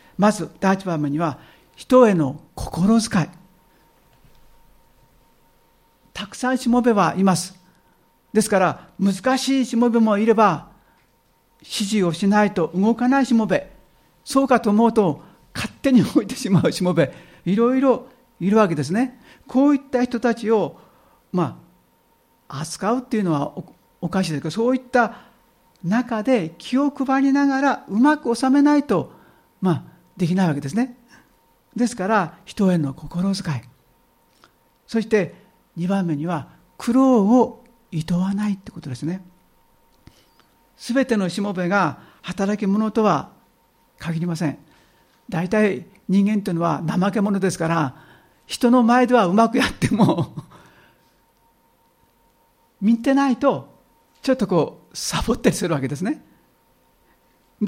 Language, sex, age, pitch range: Japanese, male, 60-79, 175-240 Hz